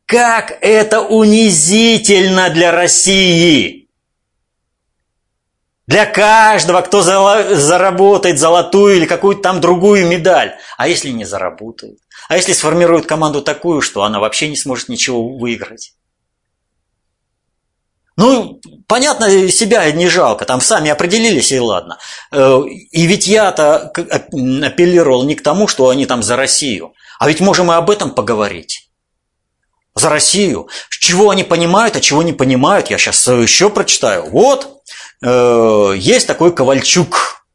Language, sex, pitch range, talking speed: Russian, male, 135-195 Hz, 125 wpm